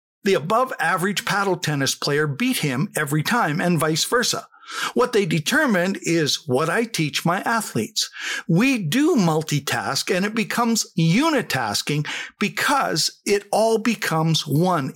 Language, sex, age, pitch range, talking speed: English, male, 60-79, 165-230 Hz, 135 wpm